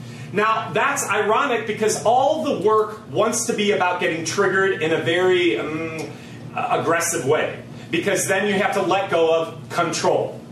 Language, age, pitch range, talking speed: English, 30-49, 160-215 Hz, 160 wpm